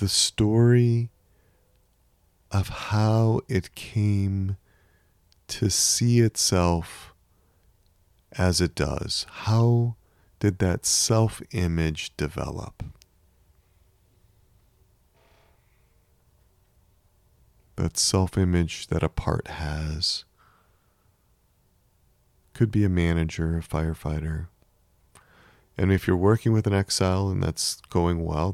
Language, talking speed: English, 85 wpm